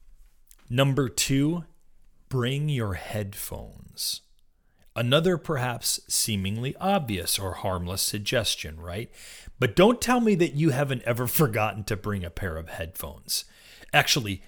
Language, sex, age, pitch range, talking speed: English, male, 30-49, 100-140 Hz, 120 wpm